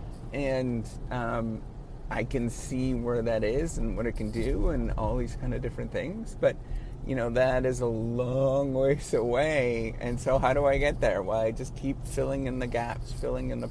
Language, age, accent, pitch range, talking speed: English, 30-49, American, 110-130 Hz, 205 wpm